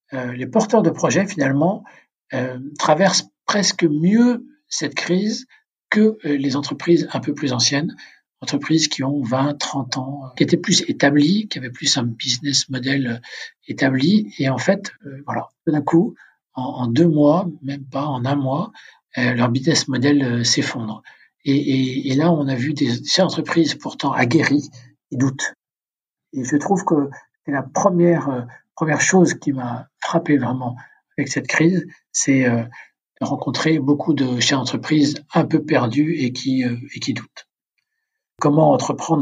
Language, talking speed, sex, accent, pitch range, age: French, 170 wpm, male, French, 130-165 Hz, 60-79